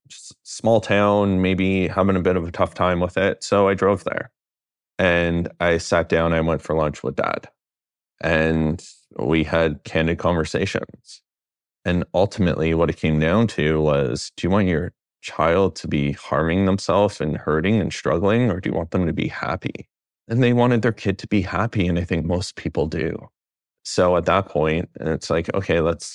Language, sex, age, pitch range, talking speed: English, male, 30-49, 80-95 Hz, 190 wpm